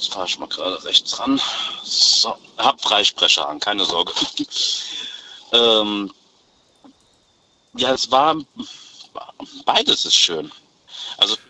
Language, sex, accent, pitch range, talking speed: German, male, German, 105-130 Hz, 110 wpm